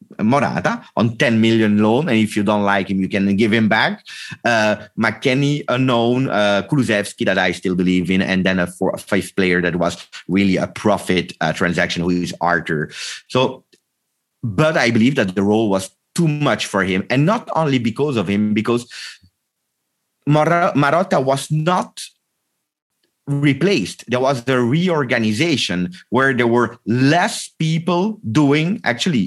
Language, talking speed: English, 155 wpm